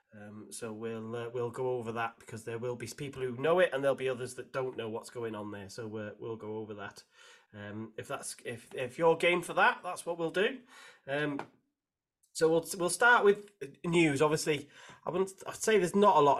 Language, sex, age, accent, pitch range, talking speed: English, male, 30-49, British, 125-175 Hz, 225 wpm